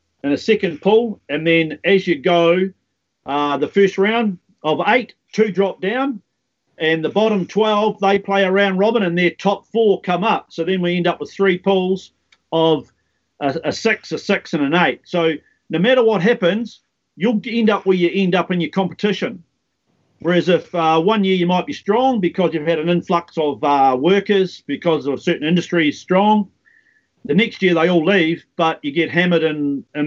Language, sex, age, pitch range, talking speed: English, male, 50-69, 160-195 Hz, 195 wpm